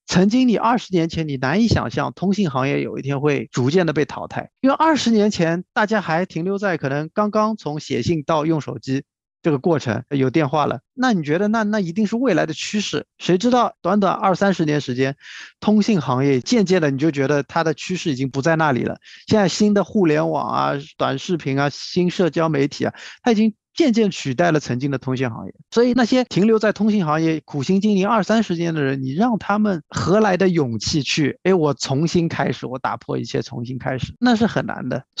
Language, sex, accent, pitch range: Chinese, male, native, 145-210 Hz